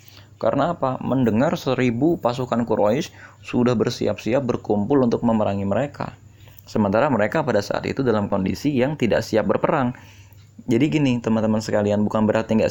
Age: 20-39